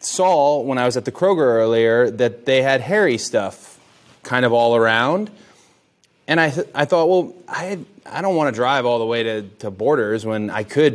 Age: 20-39